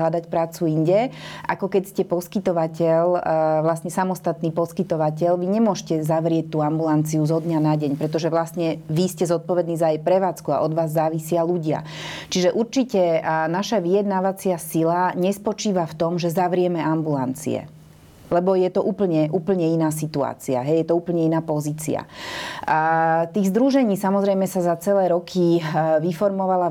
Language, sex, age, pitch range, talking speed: Slovak, female, 30-49, 160-180 Hz, 140 wpm